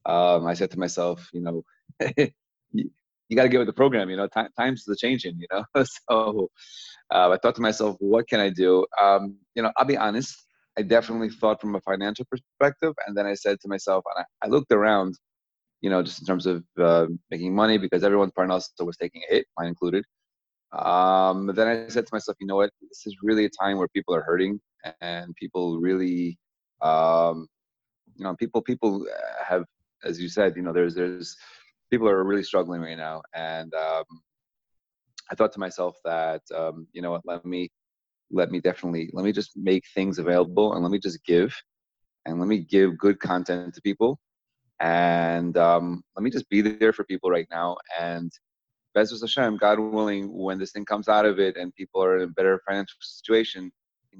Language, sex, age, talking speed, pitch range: English, male, 30-49, 205 wpm, 85-105 Hz